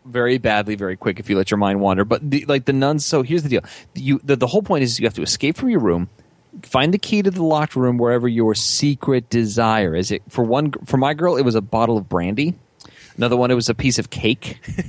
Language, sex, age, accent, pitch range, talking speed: English, male, 30-49, American, 115-140 Hz, 260 wpm